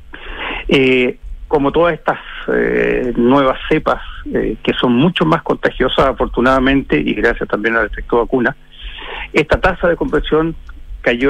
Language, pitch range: Spanish, 115-145 Hz